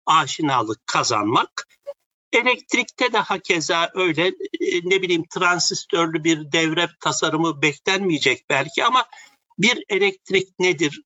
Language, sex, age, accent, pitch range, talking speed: Turkish, male, 60-79, native, 155-220 Hz, 100 wpm